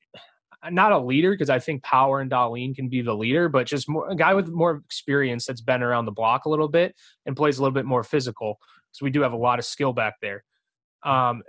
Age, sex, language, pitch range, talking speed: 20-39, male, English, 125-155 Hz, 240 wpm